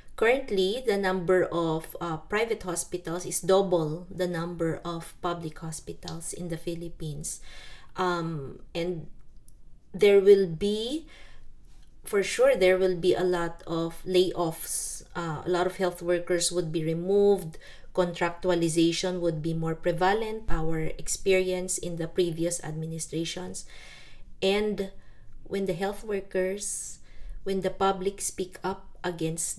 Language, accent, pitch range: English, Filipino, 165-190 Hz